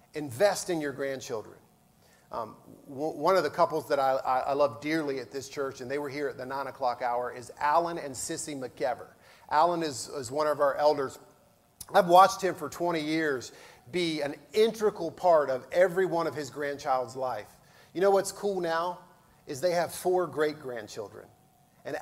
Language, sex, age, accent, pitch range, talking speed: English, male, 40-59, American, 150-195 Hz, 190 wpm